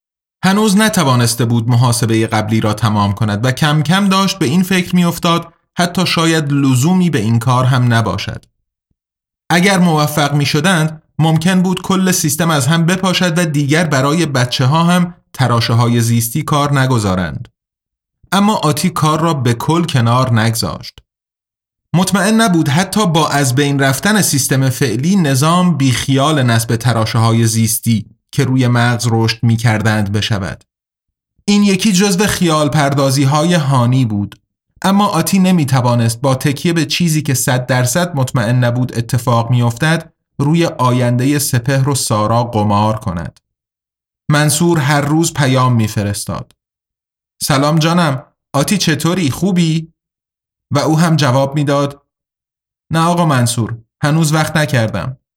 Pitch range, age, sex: 120-165 Hz, 30-49, male